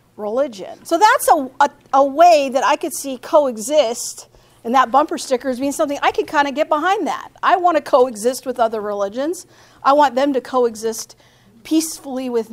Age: 50-69